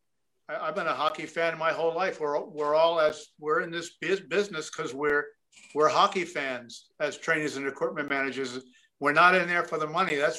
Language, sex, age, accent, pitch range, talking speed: English, male, 50-69, American, 145-170 Hz, 200 wpm